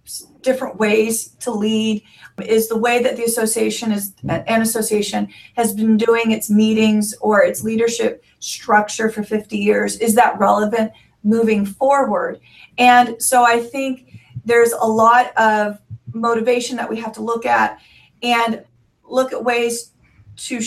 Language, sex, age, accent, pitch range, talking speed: English, female, 40-59, American, 210-235 Hz, 145 wpm